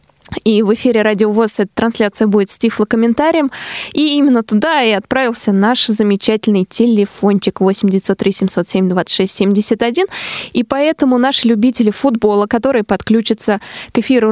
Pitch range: 205-250 Hz